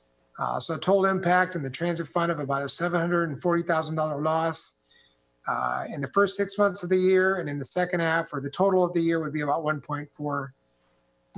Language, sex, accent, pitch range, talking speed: English, male, American, 140-175 Hz, 195 wpm